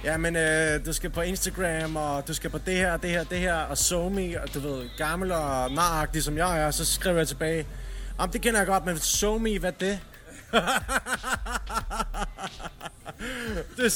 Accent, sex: native, male